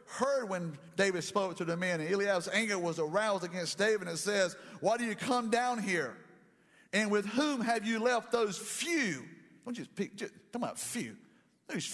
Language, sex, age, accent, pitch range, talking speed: English, male, 50-69, American, 175-230 Hz, 195 wpm